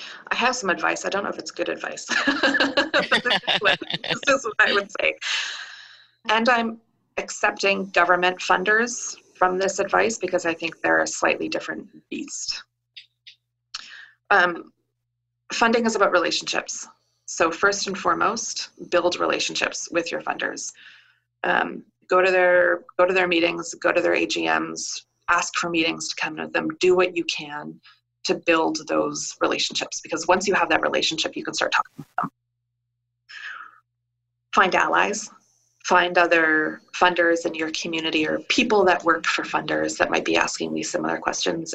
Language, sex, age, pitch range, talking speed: English, female, 30-49, 120-195 Hz, 150 wpm